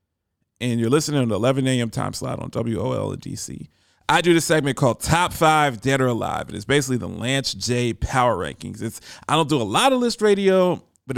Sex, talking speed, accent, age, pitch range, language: male, 225 wpm, American, 40-59, 115-170 Hz, English